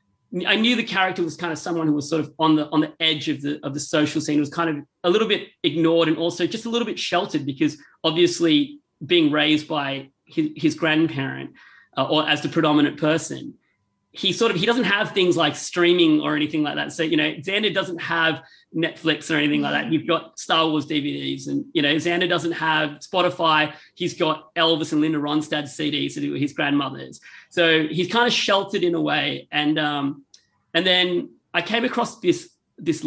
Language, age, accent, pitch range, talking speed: English, 30-49, Australian, 150-175 Hz, 210 wpm